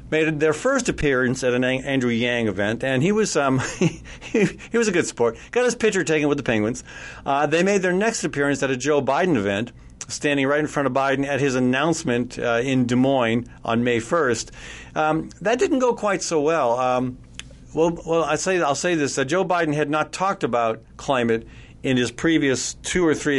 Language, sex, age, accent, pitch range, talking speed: English, male, 50-69, American, 125-165 Hz, 210 wpm